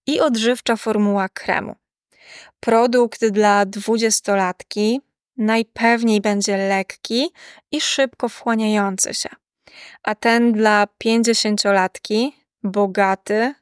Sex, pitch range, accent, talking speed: female, 205-235 Hz, native, 85 wpm